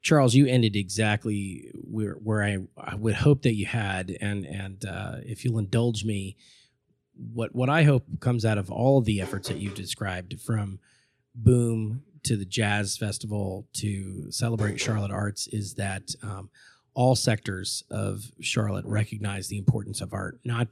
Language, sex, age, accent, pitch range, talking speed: English, male, 30-49, American, 105-120 Hz, 165 wpm